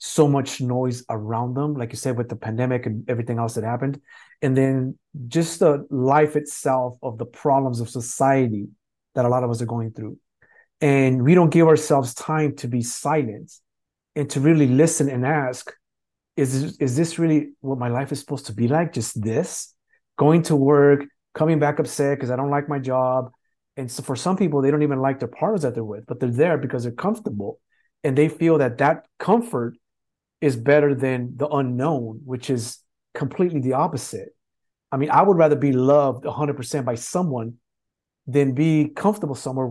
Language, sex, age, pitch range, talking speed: English, male, 30-49, 120-150 Hz, 190 wpm